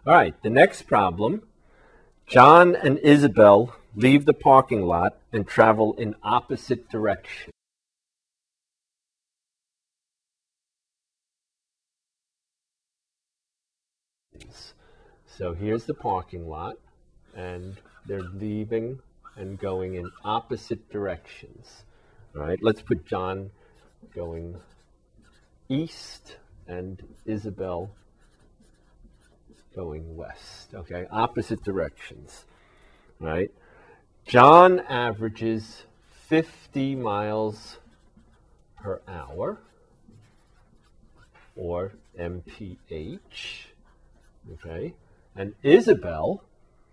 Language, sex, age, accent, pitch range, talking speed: English, male, 50-69, American, 95-120 Hz, 70 wpm